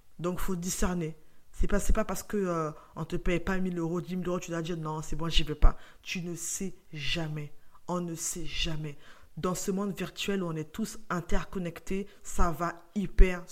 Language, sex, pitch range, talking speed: French, female, 170-205 Hz, 230 wpm